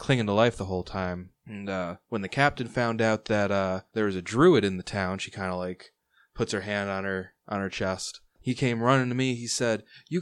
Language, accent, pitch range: English, American, 95-140 Hz